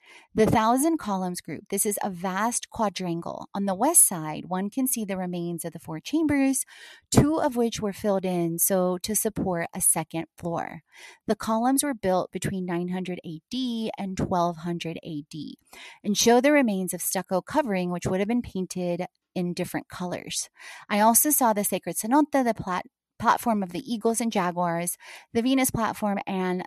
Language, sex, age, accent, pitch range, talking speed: English, female, 30-49, American, 175-230 Hz, 175 wpm